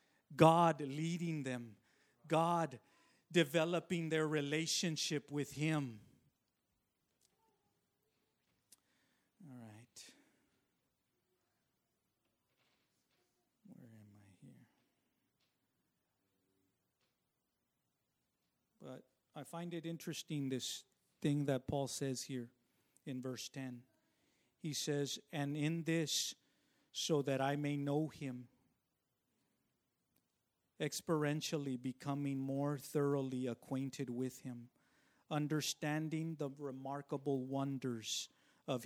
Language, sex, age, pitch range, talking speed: English, male, 50-69, 130-155 Hz, 80 wpm